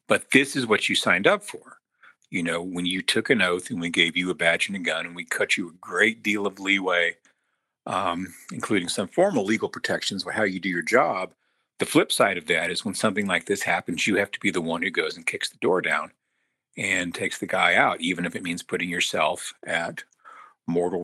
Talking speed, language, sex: 235 wpm, English, male